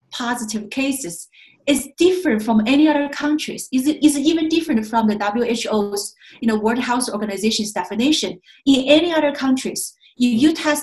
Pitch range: 210-290 Hz